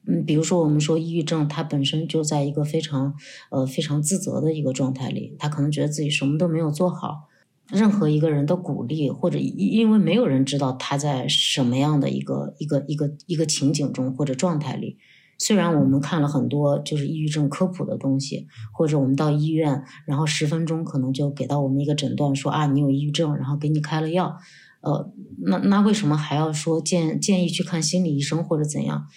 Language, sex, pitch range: Chinese, female, 145-180 Hz